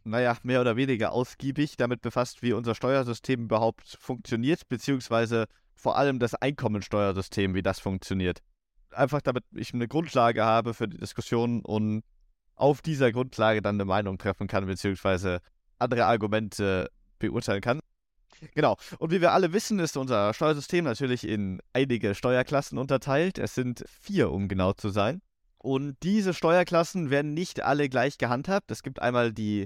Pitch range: 110-145 Hz